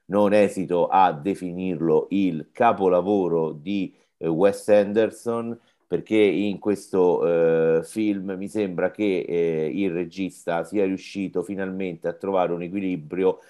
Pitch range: 95-110 Hz